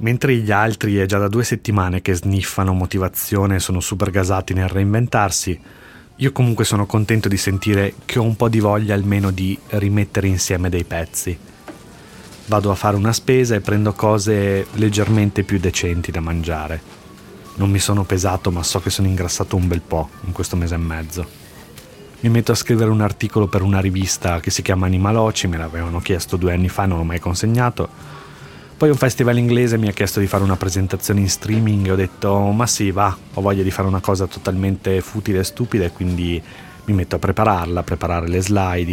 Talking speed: 195 wpm